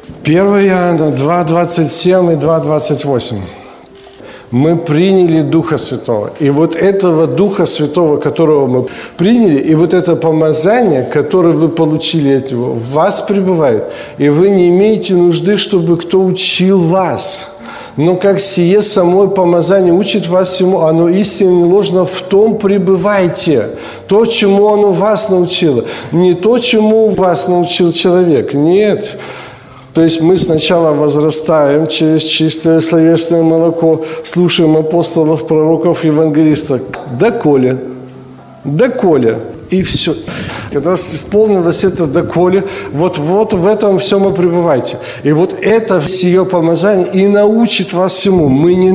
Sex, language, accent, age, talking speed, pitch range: male, Ukrainian, native, 50-69, 130 wpm, 160-195 Hz